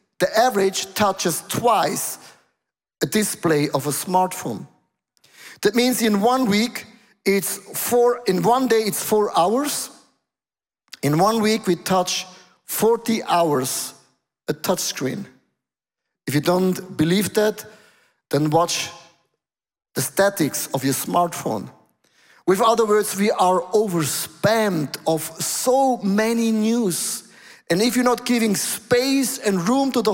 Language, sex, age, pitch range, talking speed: English, male, 50-69, 170-225 Hz, 125 wpm